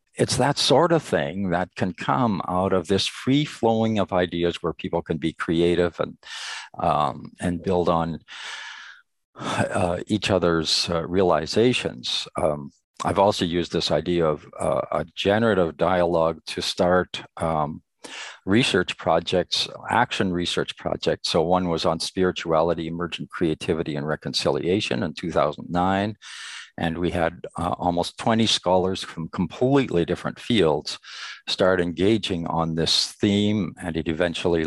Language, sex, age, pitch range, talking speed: English, male, 50-69, 85-95 Hz, 135 wpm